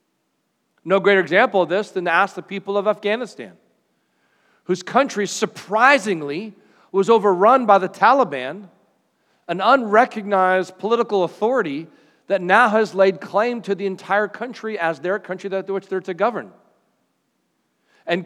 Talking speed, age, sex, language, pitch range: 140 wpm, 40-59, male, English, 175-215 Hz